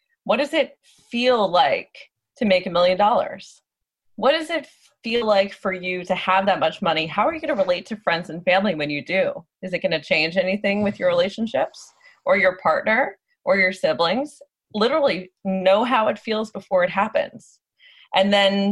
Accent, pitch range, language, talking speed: American, 180-245 Hz, English, 190 wpm